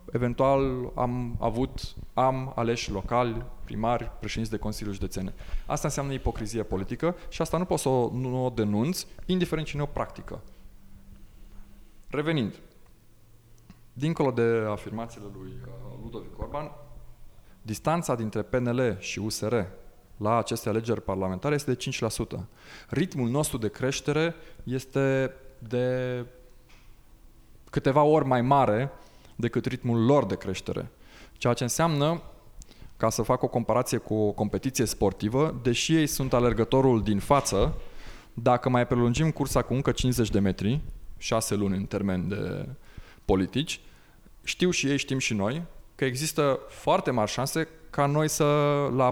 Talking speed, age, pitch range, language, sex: 135 wpm, 20-39, 105-135 Hz, Romanian, male